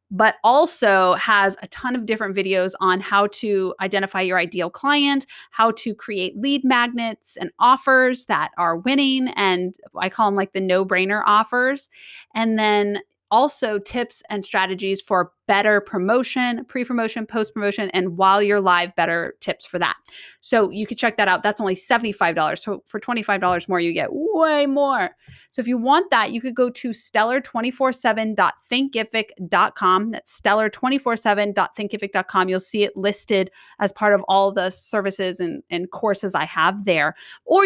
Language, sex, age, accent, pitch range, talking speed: English, female, 20-39, American, 190-245 Hz, 160 wpm